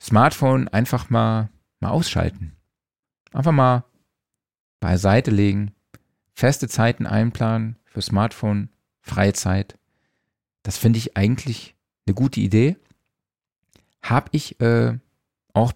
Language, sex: German, male